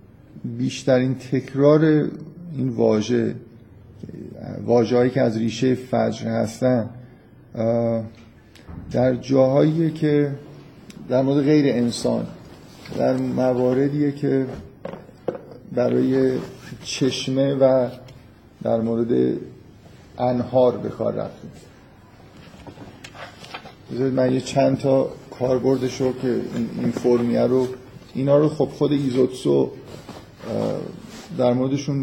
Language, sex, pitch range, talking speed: Persian, male, 120-135 Hz, 85 wpm